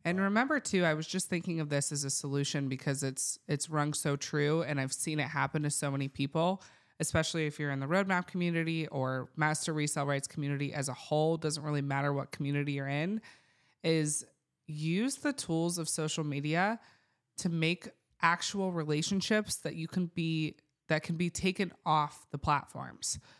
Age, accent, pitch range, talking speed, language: 20-39, American, 145-170 Hz, 180 wpm, English